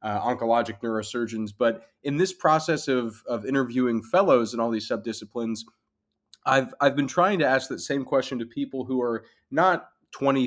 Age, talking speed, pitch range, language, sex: 20-39, 170 wpm, 110-130 Hz, English, male